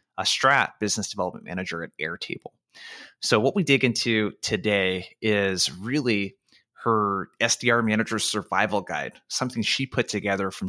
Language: English